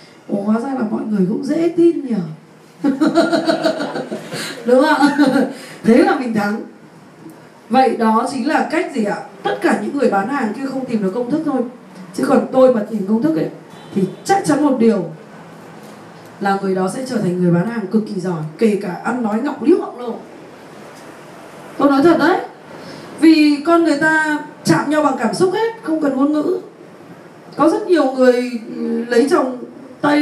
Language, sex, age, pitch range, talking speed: Vietnamese, female, 20-39, 225-300 Hz, 190 wpm